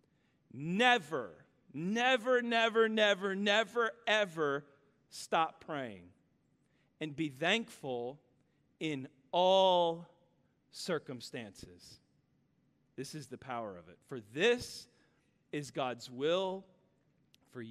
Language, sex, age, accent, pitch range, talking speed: English, male, 40-59, American, 140-220 Hz, 90 wpm